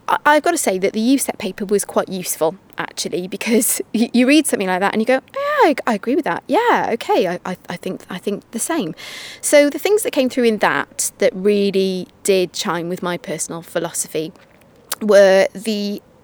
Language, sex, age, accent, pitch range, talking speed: English, female, 20-39, British, 185-230 Hz, 205 wpm